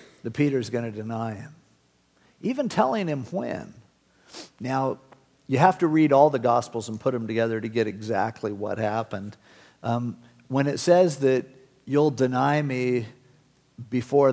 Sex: male